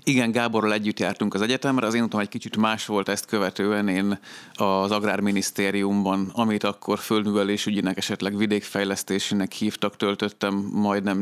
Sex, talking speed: male, 140 wpm